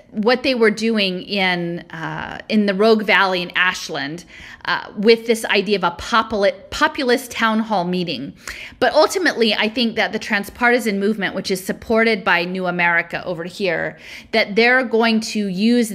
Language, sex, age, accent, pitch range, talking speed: English, female, 40-59, American, 180-225 Hz, 160 wpm